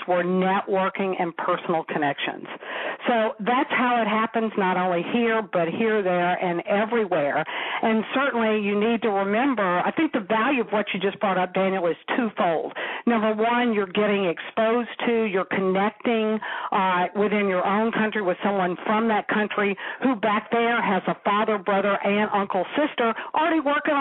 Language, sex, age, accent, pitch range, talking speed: English, female, 50-69, American, 195-230 Hz, 165 wpm